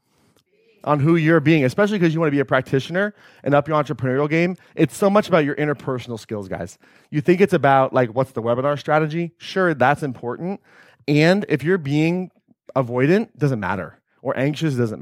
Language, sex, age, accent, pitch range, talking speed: English, male, 30-49, American, 130-180 Hz, 195 wpm